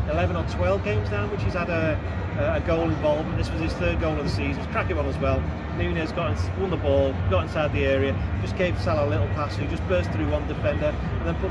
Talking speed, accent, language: 275 wpm, British, English